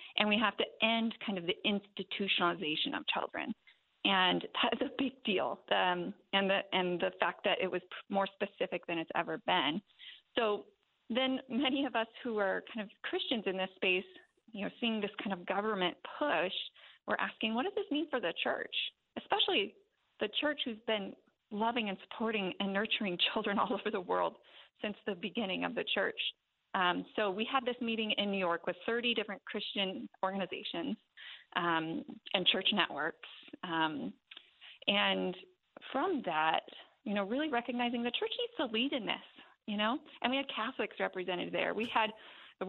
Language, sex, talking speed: English, female, 180 wpm